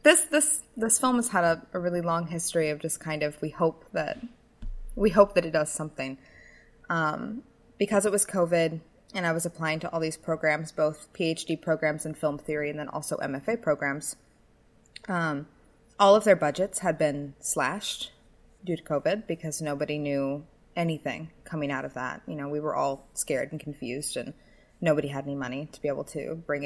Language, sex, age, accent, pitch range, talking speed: English, female, 20-39, American, 145-175 Hz, 190 wpm